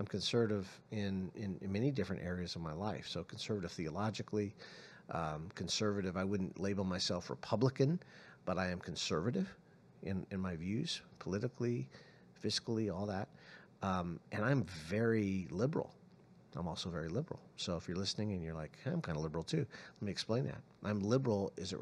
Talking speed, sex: 175 wpm, male